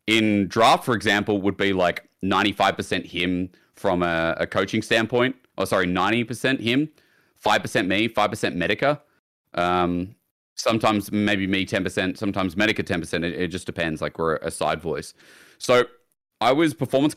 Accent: Australian